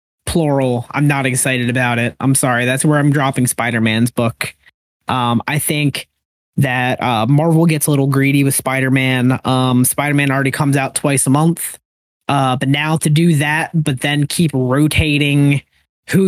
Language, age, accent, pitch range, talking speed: English, 20-39, American, 125-155 Hz, 160 wpm